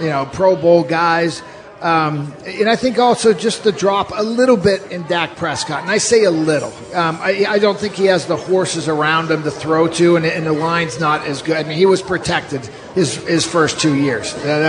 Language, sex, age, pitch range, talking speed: English, male, 50-69, 160-195 Hz, 230 wpm